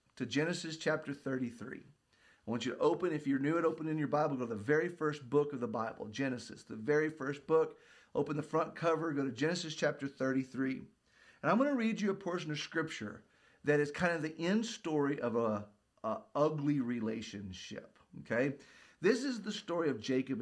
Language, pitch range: English, 120-170 Hz